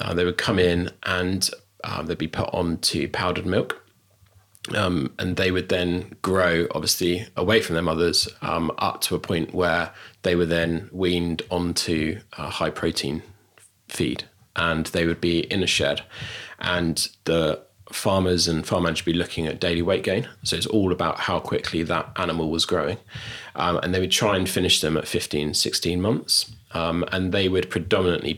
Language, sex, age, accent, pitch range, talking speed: English, male, 20-39, British, 85-95 Hz, 175 wpm